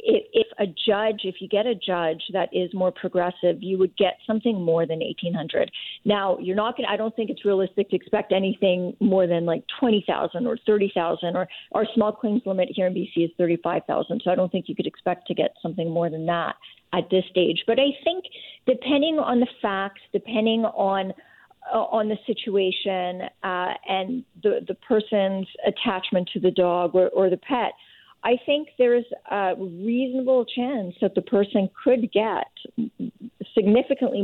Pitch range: 185-235 Hz